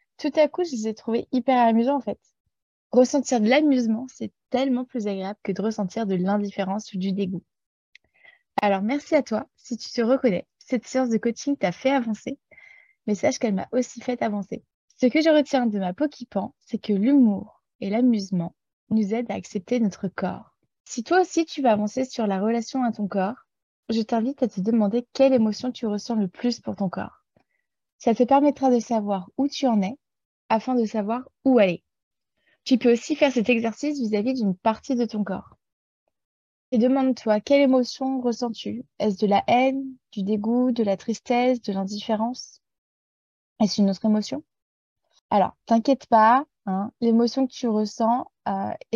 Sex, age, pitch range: female, 20-39, 210-255 Hz